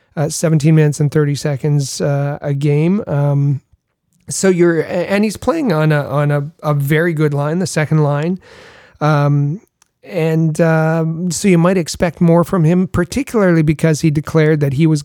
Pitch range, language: 145-170 Hz, English